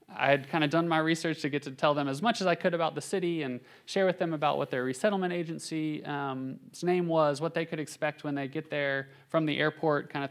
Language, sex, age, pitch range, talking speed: English, male, 30-49, 120-145 Hz, 260 wpm